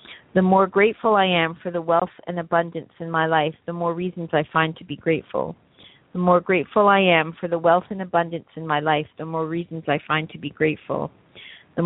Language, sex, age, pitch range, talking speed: English, female, 40-59, 160-175 Hz, 220 wpm